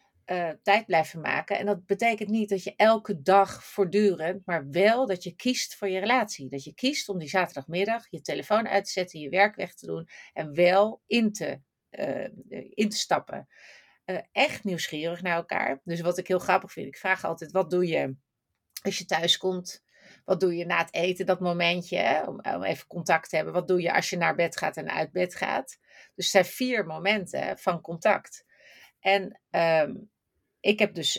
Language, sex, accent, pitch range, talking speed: Dutch, female, Dutch, 175-210 Hz, 200 wpm